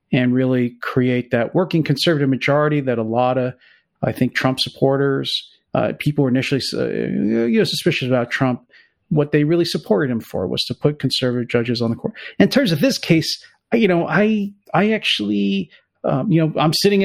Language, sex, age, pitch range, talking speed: English, male, 40-59, 130-170 Hz, 190 wpm